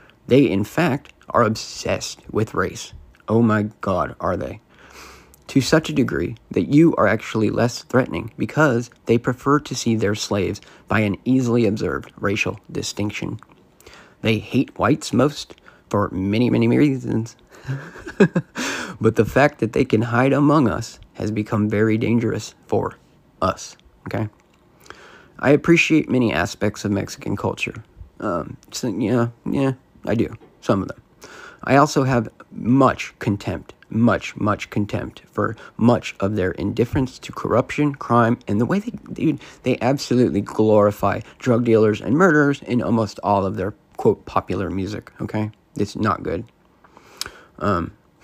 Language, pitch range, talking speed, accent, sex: English, 105-125 Hz, 145 wpm, American, male